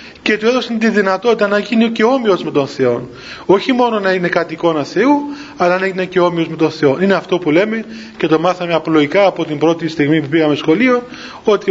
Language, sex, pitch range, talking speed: Greek, male, 160-205 Hz, 215 wpm